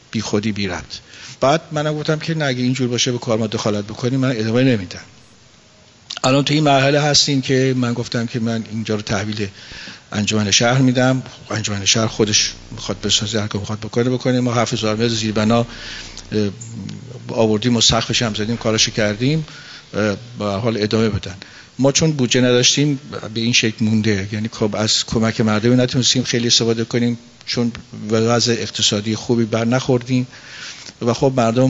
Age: 50-69